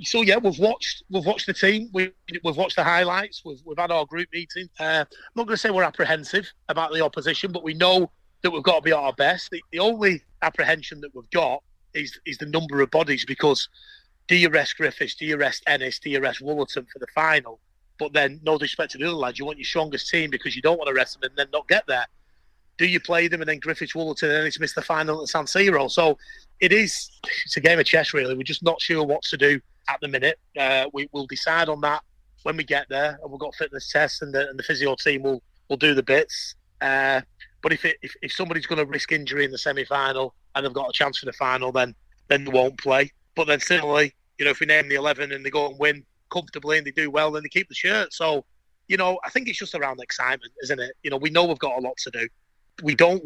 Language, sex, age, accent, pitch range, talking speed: English, male, 30-49, British, 140-170 Hz, 260 wpm